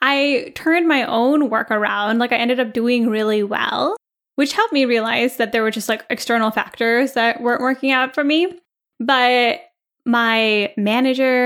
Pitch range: 225-275 Hz